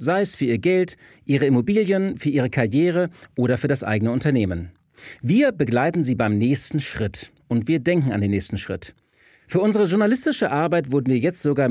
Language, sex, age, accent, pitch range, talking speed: German, male, 40-59, German, 95-155 Hz, 185 wpm